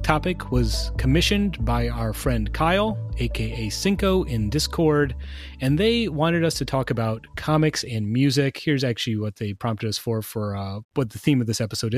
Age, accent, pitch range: 30-49, American, 110-150 Hz